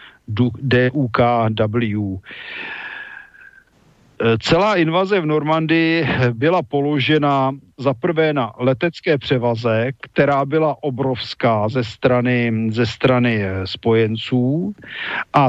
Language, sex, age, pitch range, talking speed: Slovak, male, 50-69, 130-160 Hz, 80 wpm